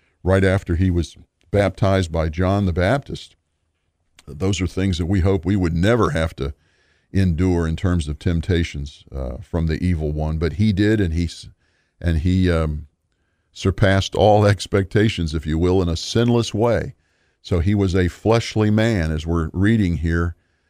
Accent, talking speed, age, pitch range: American, 170 wpm, 50-69, 85-100 Hz